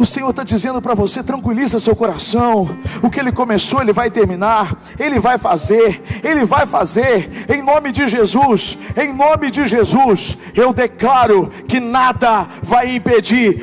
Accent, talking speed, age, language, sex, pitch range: Brazilian, 160 wpm, 50-69, Portuguese, male, 195-280 Hz